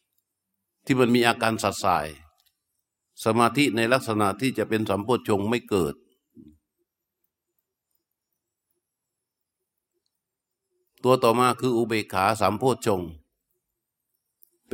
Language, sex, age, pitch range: Thai, male, 60-79, 105-130 Hz